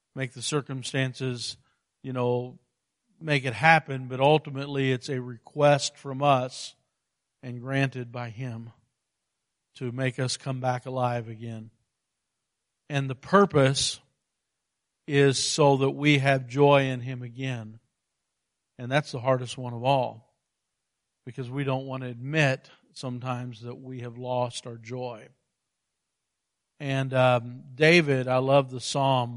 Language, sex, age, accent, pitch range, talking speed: English, male, 50-69, American, 125-140 Hz, 135 wpm